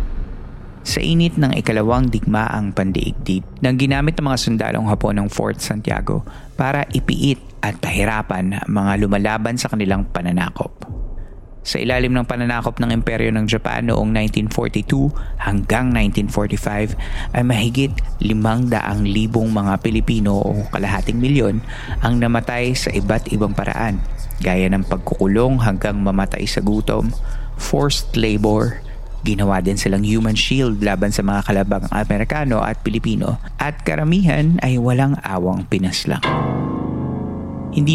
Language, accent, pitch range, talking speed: Filipino, native, 95-120 Hz, 125 wpm